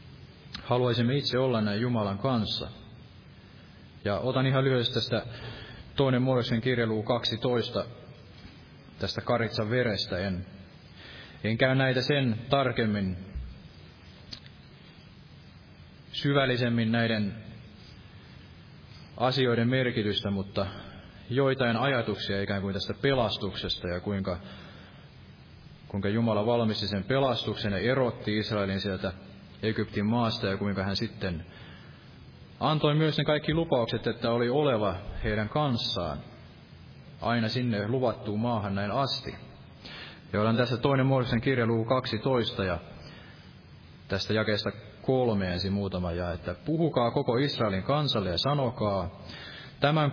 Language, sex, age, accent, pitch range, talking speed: Finnish, male, 30-49, native, 100-130 Hz, 110 wpm